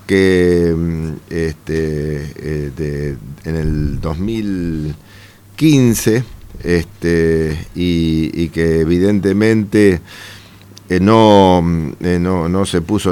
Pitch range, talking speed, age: 85-105 Hz, 60 wpm, 50-69